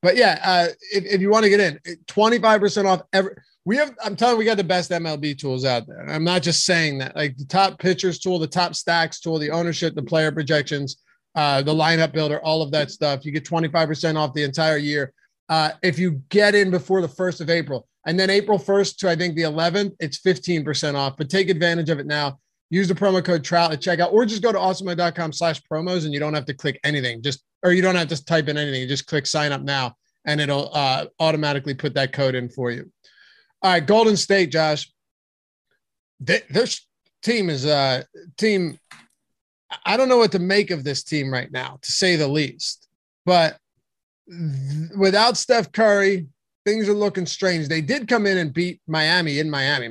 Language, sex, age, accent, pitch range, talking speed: English, male, 30-49, American, 150-185 Hz, 215 wpm